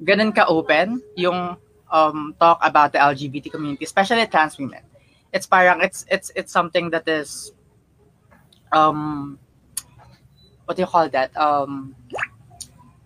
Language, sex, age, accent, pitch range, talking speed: English, female, 20-39, Filipino, 150-200 Hz, 130 wpm